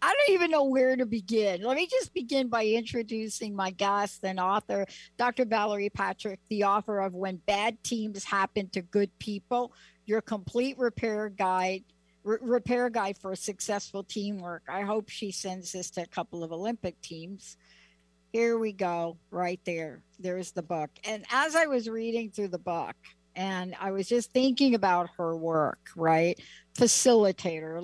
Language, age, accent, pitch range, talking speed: English, 60-79, American, 195-245 Hz, 165 wpm